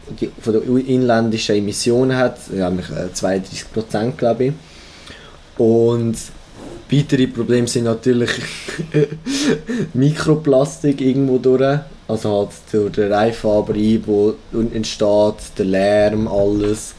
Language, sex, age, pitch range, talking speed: German, male, 20-39, 100-130 Hz, 90 wpm